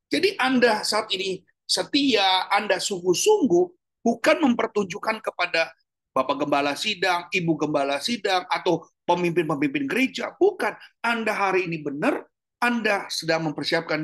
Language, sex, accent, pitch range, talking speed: Indonesian, male, native, 150-215 Hz, 115 wpm